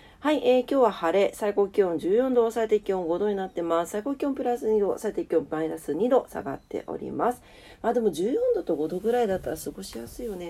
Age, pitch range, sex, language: 40-59, 165-255 Hz, female, Japanese